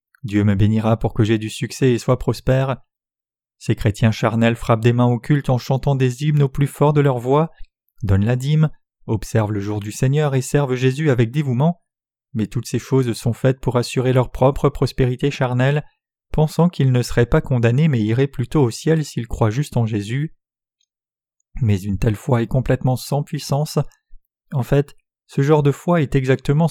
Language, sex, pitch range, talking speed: French, male, 120-140 Hz, 195 wpm